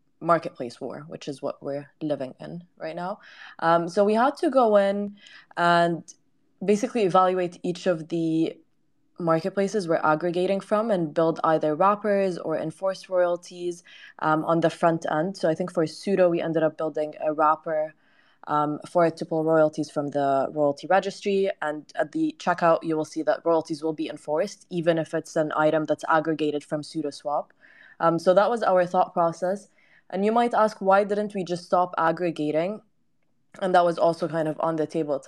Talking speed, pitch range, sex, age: 185 wpm, 155-190 Hz, female, 20-39